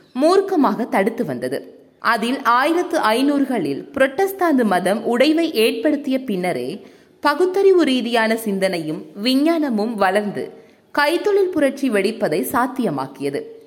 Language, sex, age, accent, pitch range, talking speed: Tamil, female, 20-39, native, 215-300 Hz, 85 wpm